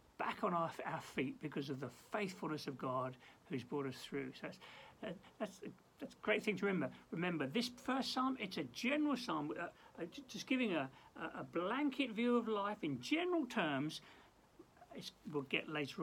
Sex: male